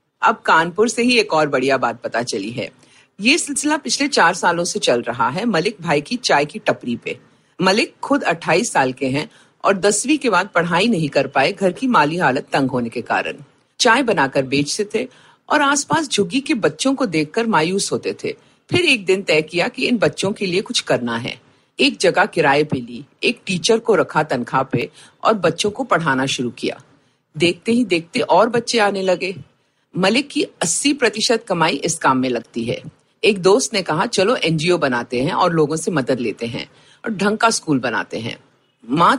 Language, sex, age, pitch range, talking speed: Hindi, female, 50-69, 150-235 Hz, 170 wpm